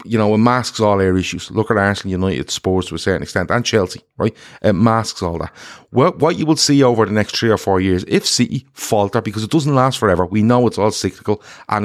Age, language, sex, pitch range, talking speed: 30-49, English, male, 90-120 Hz, 255 wpm